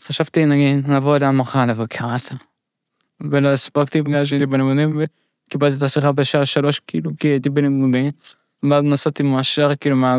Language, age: Hebrew, 20-39